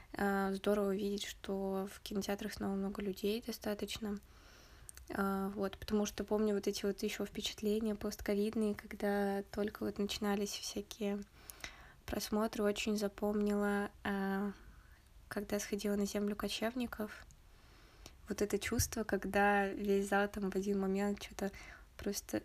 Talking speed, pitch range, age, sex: 115 wpm, 195-210 Hz, 20-39, female